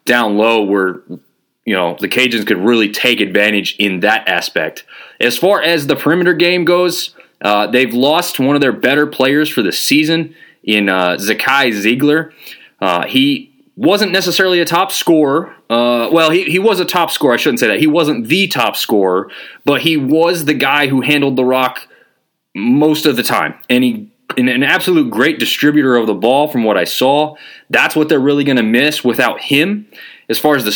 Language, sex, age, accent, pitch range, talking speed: English, male, 20-39, American, 130-175 Hz, 195 wpm